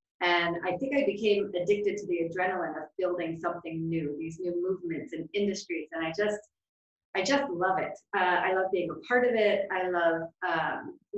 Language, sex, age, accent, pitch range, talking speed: English, female, 30-49, American, 175-210 Hz, 195 wpm